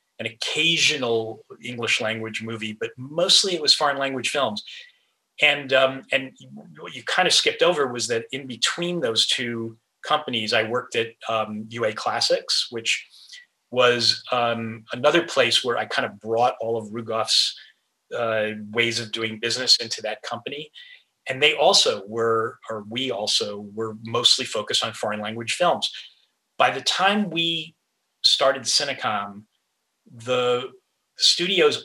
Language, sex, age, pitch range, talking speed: English, male, 30-49, 110-140 Hz, 145 wpm